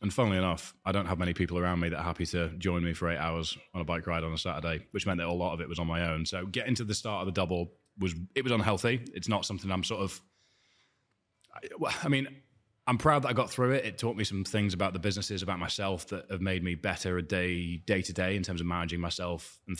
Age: 20-39